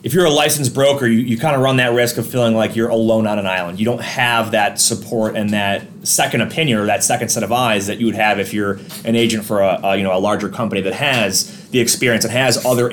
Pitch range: 105-130 Hz